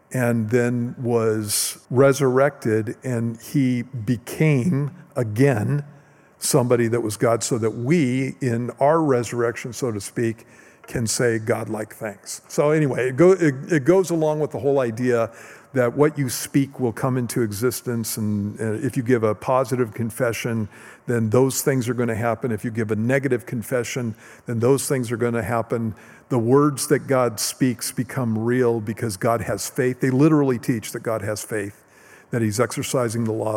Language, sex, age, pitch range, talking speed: English, male, 50-69, 115-135 Hz, 165 wpm